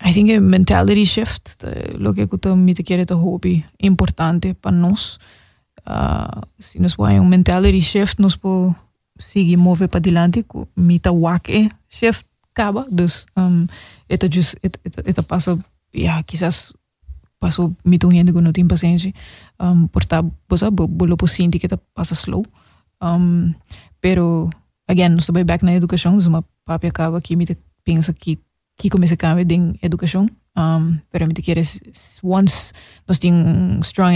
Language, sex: Dutch, female